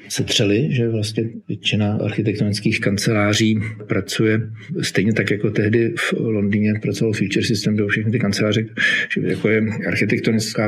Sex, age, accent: male, 50-69, native